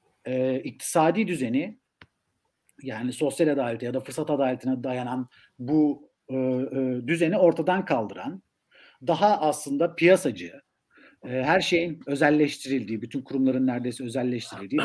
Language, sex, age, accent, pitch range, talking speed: Turkish, male, 50-69, native, 130-195 Hz, 115 wpm